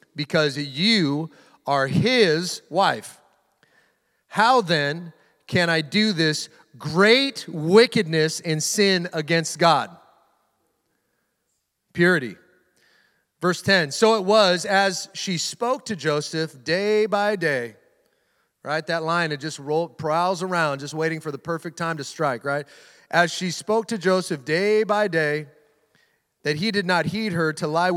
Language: English